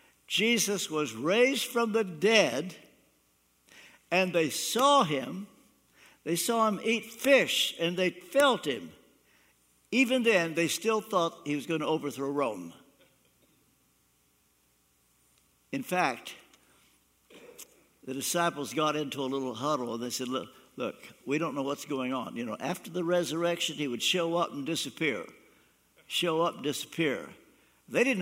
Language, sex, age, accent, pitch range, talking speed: English, male, 60-79, American, 140-210 Hz, 140 wpm